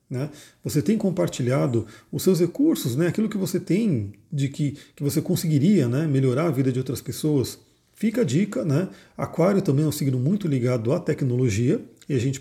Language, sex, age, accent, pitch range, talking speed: Portuguese, male, 40-59, Brazilian, 130-175 Hz, 195 wpm